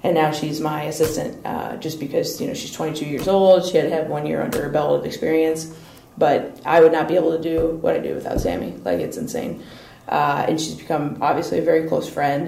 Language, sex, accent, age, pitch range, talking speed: English, female, American, 20-39, 155-180 Hz, 240 wpm